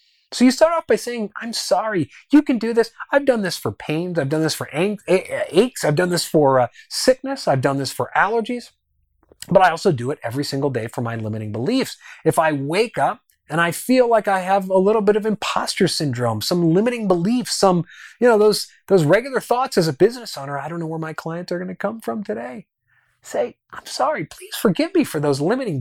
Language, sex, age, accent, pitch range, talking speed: English, male, 30-49, American, 155-225 Hz, 230 wpm